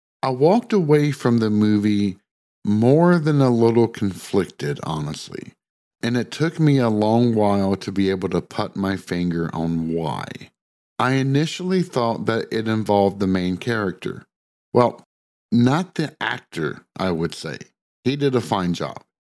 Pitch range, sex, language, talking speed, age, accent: 100-135 Hz, male, English, 150 wpm, 50-69, American